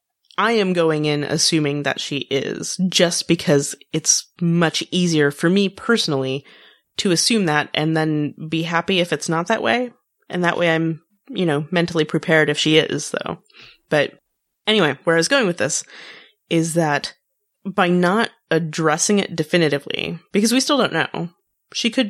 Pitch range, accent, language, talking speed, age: 155-195 Hz, American, English, 170 wpm, 30-49